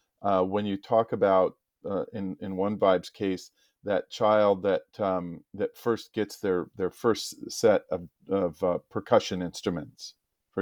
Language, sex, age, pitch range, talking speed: English, male, 40-59, 95-110 Hz, 160 wpm